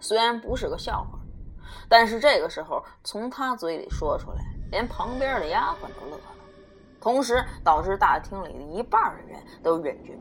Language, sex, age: Chinese, female, 20-39